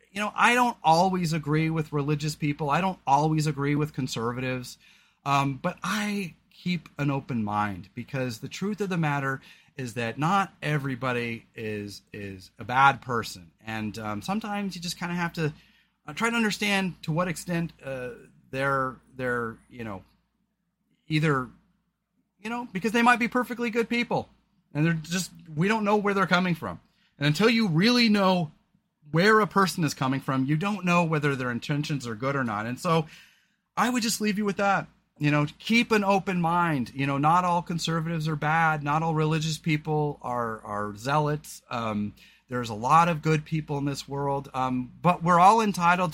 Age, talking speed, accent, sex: 30-49, 185 wpm, American, male